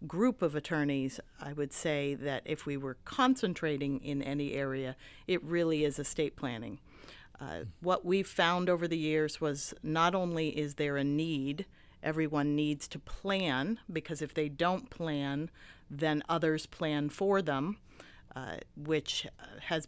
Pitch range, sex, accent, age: 140-165 Hz, female, American, 50-69